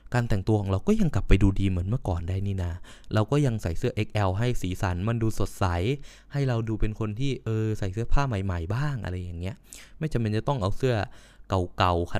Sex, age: male, 20-39